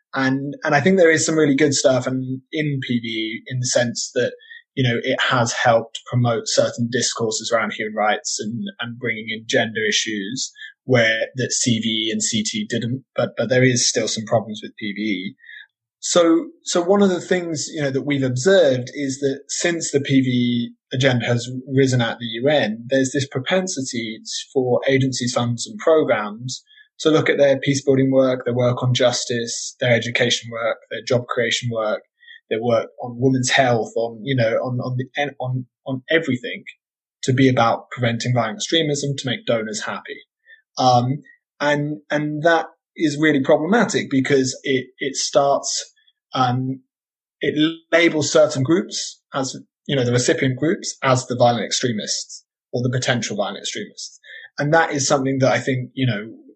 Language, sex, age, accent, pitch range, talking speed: English, male, 20-39, British, 120-155 Hz, 170 wpm